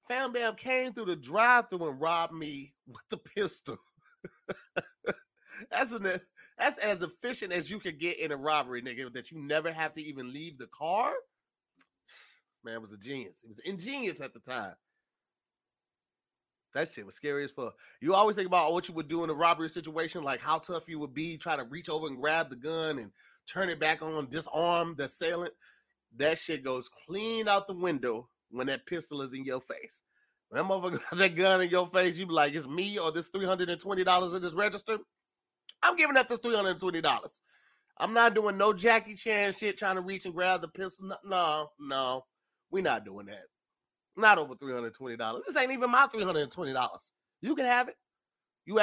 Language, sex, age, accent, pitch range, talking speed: English, male, 30-49, American, 155-205 Hz, 195 wpm